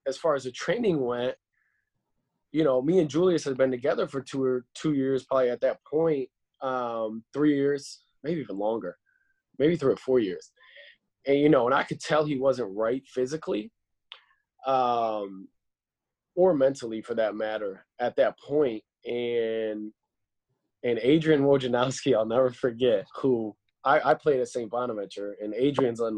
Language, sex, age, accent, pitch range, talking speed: English, male, 20-39, American, 115-150 Hz, 165 wpm